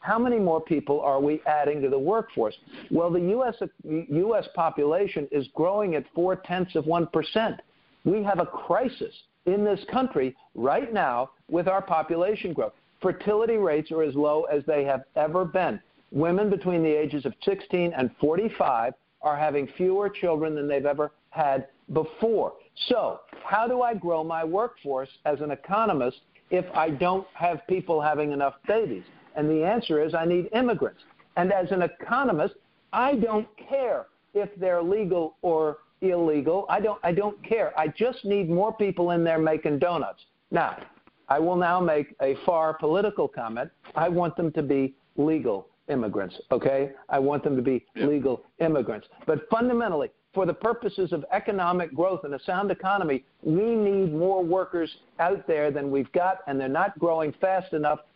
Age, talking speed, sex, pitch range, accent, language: 50-69, 170 wpm, male, 150-195 Hz, American, English